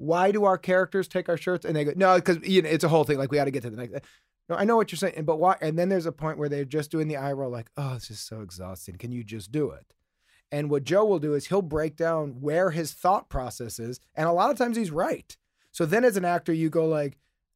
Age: 30-49